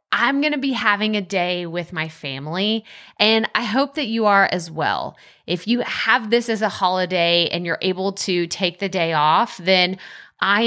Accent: American